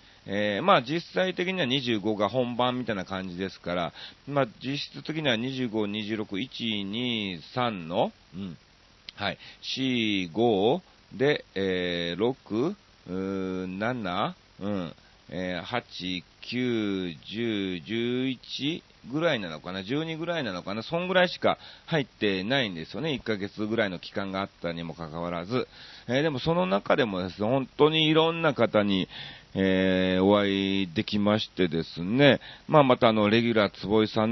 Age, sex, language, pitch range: 40-59, male, Japanese, 95-125 Hz